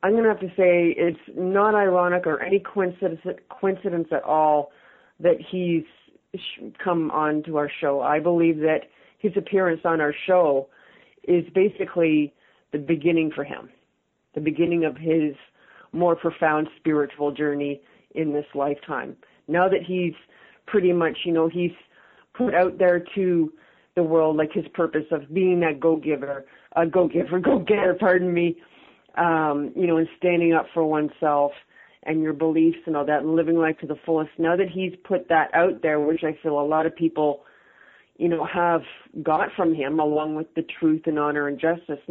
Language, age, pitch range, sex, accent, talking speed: English, 40-59, 150-175 Hz, female, American, 170 wpm